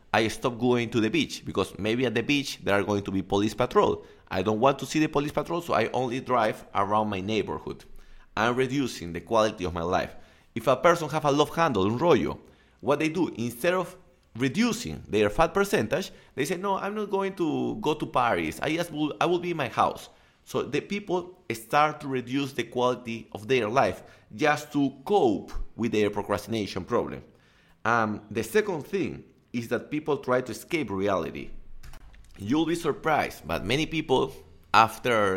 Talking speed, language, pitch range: 190 wpm, English, 110-150 Hz